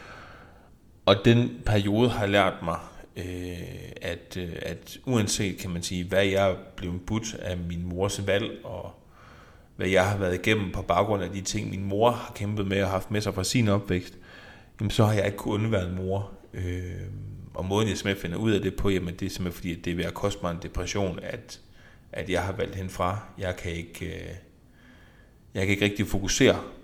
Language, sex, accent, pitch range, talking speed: Danish, male, native, 90-105 Hz, 195 wpm